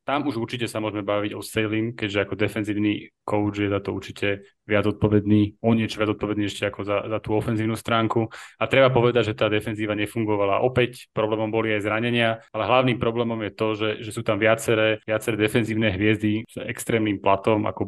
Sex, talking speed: male, 195 wpm